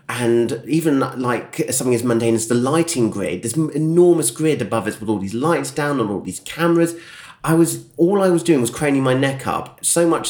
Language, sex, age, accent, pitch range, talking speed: English, male, 30-49, British, 95-120 Hz, 215 wpm